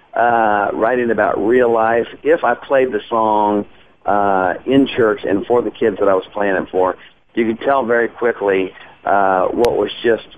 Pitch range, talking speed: 95-120 Hz, 185 wpm